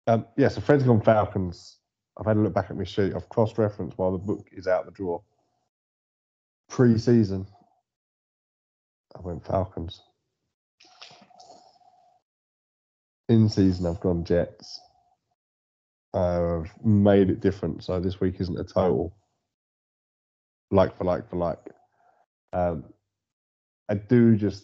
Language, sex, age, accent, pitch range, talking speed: English, male, 20-39, British, 90-110 Hz, 120 wpm